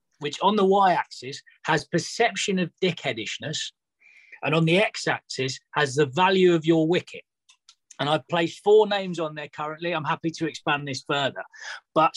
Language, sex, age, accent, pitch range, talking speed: English, male, 30-49, British, 155-195 Hz, 175 wpm